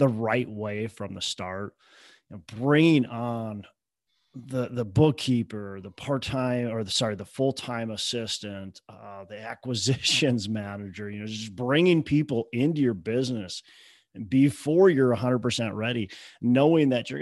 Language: English